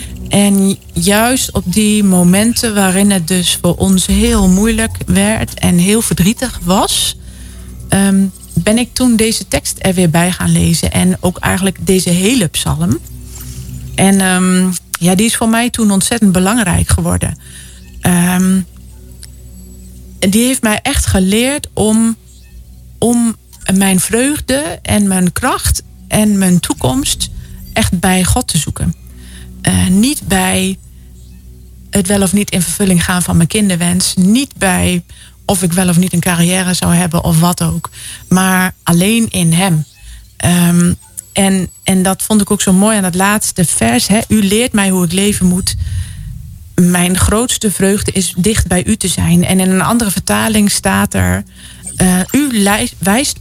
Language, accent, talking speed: Dutch, Dutch, 150 wpm